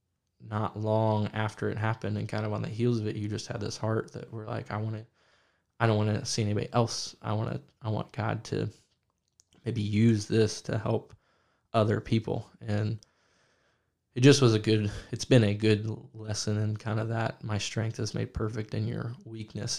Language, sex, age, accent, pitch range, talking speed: English, male, 20-39, American, 105-115 Hz, 205 wpm